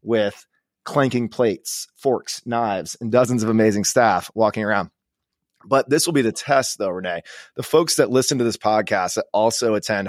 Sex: male